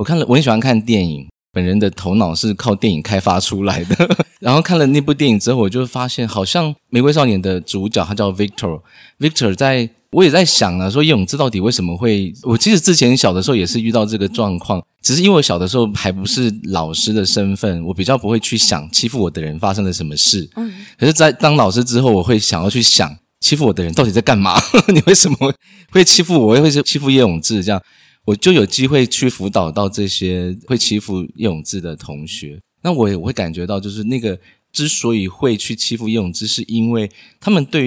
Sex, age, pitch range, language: male, 20-39, 90-125 Hz, Chinese